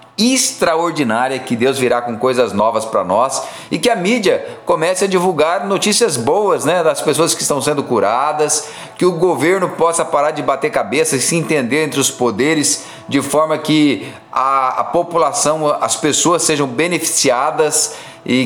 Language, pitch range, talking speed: Portuguese, 135-175 Hz, 165 wpm